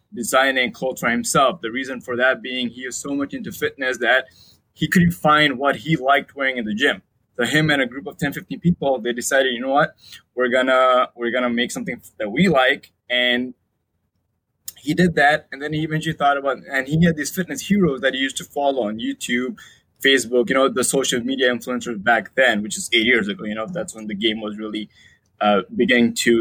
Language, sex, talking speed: English, male, 220 wpm